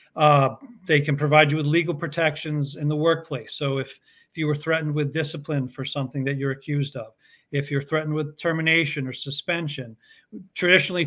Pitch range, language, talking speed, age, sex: 135-160 Hz, English, 180 wpm, 40-59, male